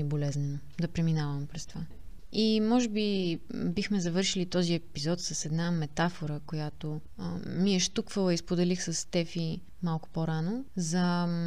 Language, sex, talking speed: Bulgarian, female, 135 wpm